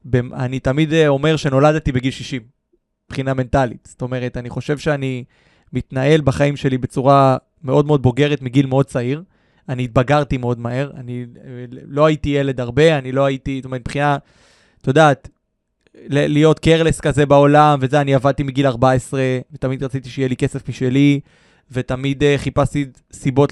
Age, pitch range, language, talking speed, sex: 20-39, 130-155 Hz, Hebrew, 150 wpm, male